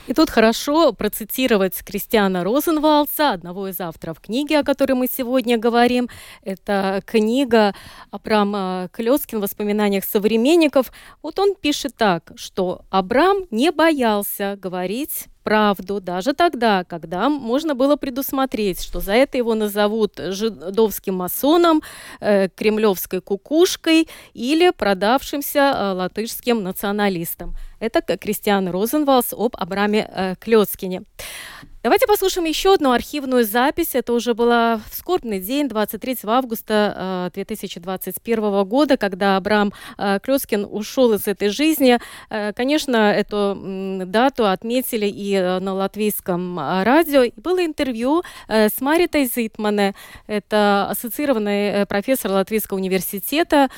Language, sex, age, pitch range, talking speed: Russian, female, 20-39, 200-270 Hz, 110 wpm